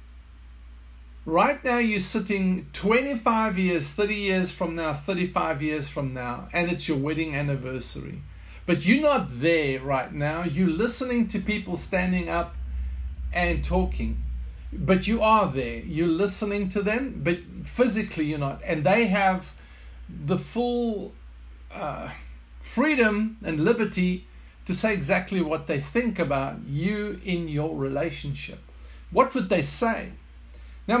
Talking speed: 135 wpm